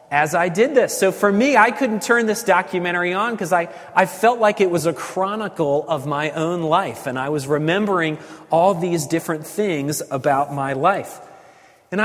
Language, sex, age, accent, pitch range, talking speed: English, male, 30-49, American, 160-210 Hz, 190 wpm